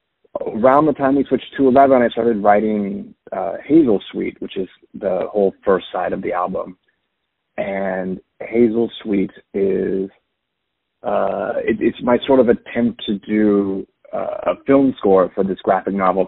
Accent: American